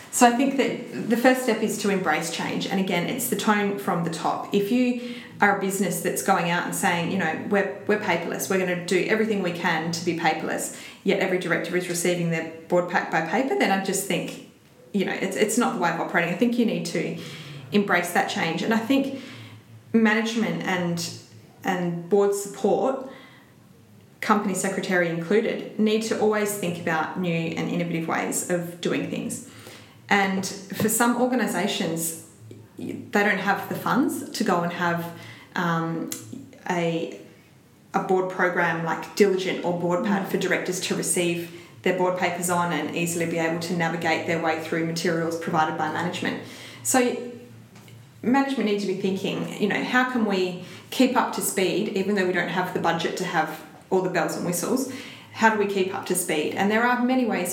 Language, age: English, 20-39